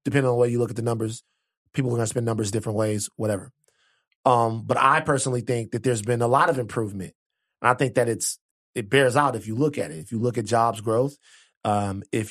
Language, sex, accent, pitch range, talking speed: English, male, American, 115-140 Hz, 250 wpm